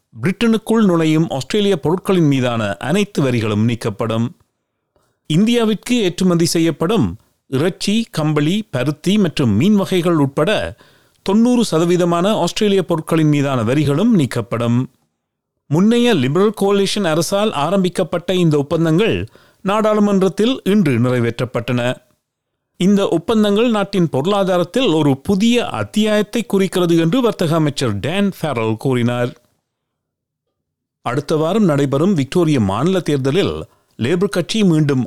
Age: 40-59